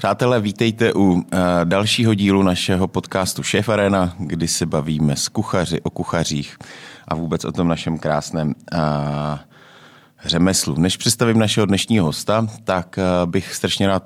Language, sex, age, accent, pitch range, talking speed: Czech, male, 30-49, native, 80-95 Hz, 135 wpm